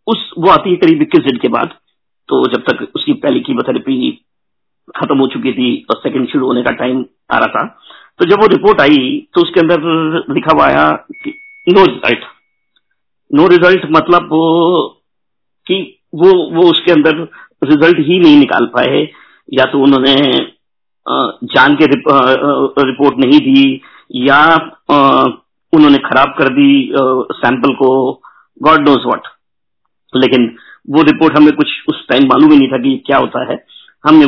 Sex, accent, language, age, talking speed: male, native, Hindi, 50-69, 155 wpm